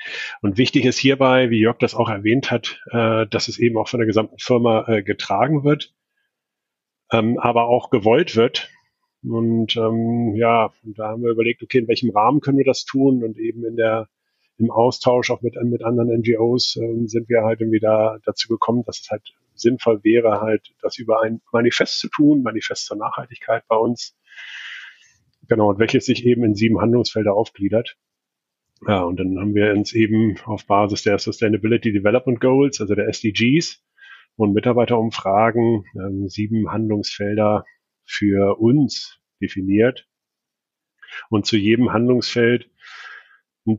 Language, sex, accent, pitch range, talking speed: German, male, German, 105-120 Hz, 150 wpm